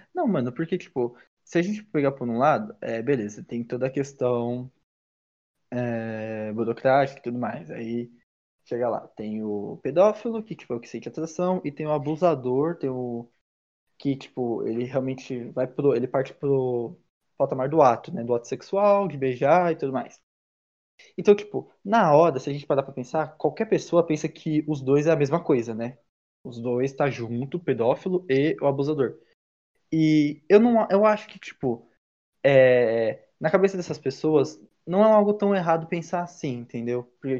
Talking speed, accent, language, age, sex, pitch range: 180 wpm, Brazilian, Portuguese, 20-39, male, 120-160 Hz